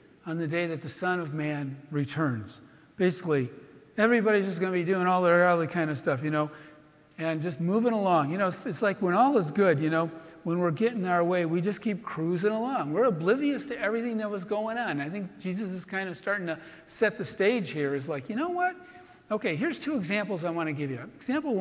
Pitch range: 155-215 Hz